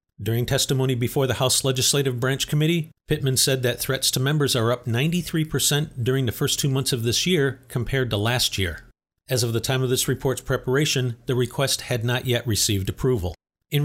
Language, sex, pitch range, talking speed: English, male, 125-150 Hz, 195 wpm